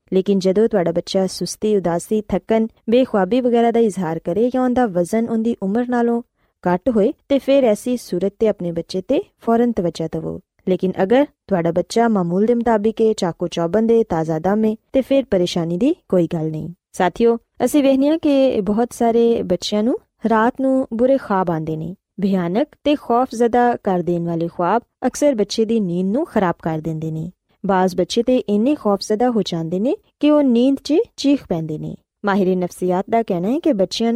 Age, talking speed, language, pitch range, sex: 20-39, 120 wpm, Punjabi, 180-245 Hz, female